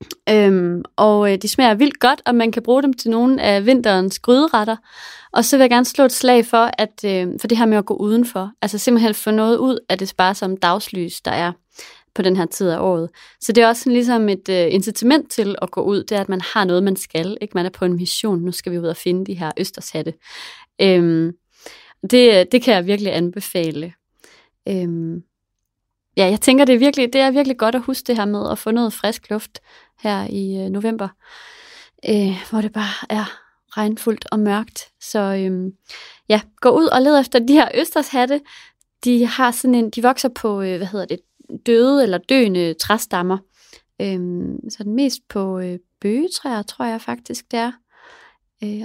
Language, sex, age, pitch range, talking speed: English, female, 30-49, 185-245 Hz, 210 wpm